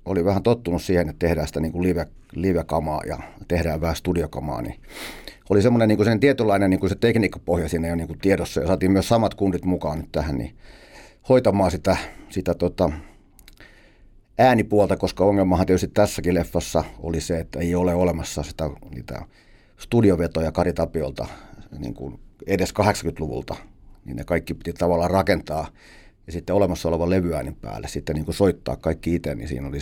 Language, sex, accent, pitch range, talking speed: Finnish, male, native, 85-105 Hz, 160 wpm